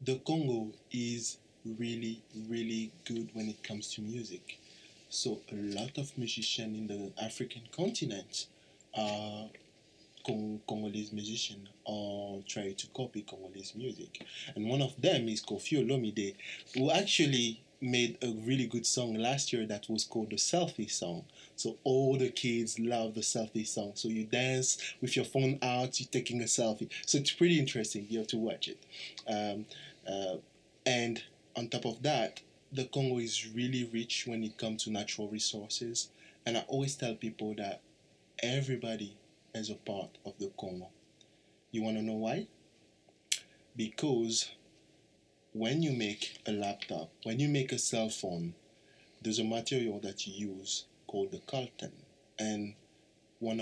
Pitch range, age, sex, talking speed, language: 105-125 Hz, 20-39, male, 155 wpm, English